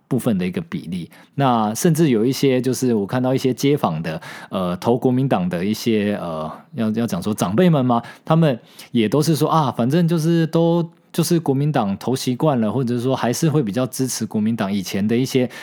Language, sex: Chinese, male